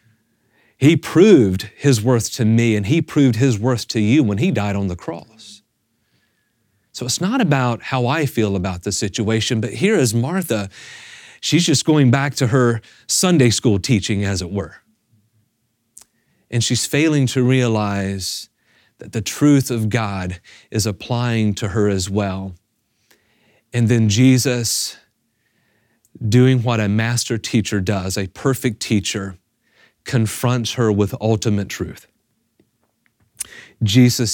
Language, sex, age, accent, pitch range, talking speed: English, male, 30-49, American, 105-125 Hz, 140 wpm